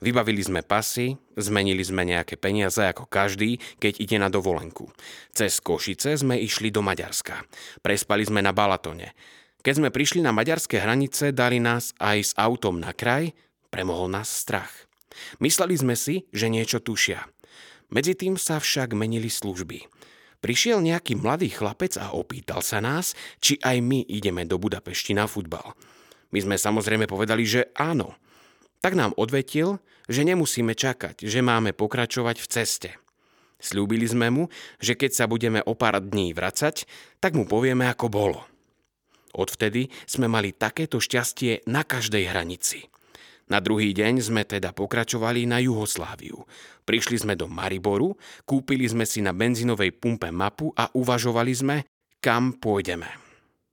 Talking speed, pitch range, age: 145 wpm, 100-125 Hz, 30-49